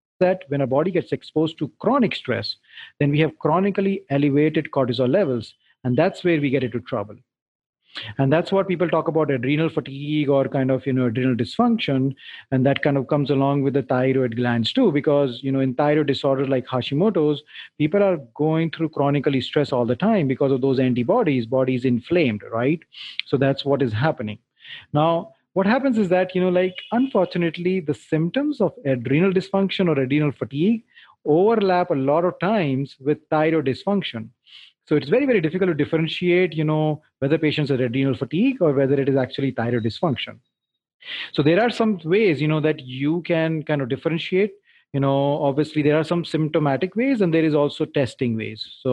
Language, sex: English, male